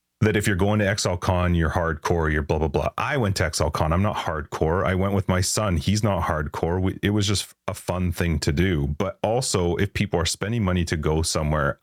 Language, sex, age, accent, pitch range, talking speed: English, male, 30-49, American, 80-95 Hz, 235 wpm